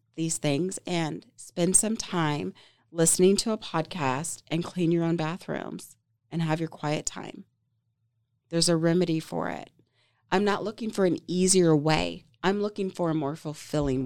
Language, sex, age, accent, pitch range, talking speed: English, female, 30-49, American, 130-175 Hz, 160 wpm